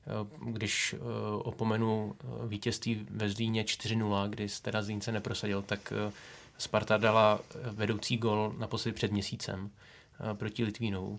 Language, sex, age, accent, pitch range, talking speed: Czech, male, 20-39, native, 105-115 Hz, 115 wpm